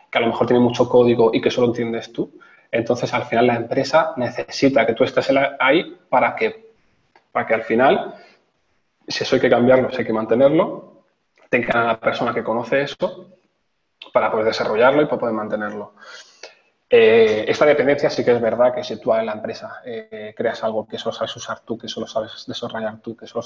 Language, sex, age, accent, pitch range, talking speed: English, male, 20-39, Spanish, 115-140 Hz, 200 wpm